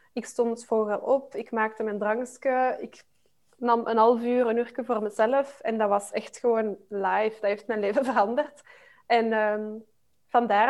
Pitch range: 215-250 Hz